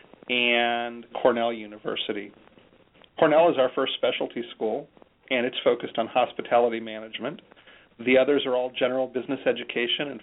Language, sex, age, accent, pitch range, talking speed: English, male, 40-59, American, 115-145 Hz, 135 wpm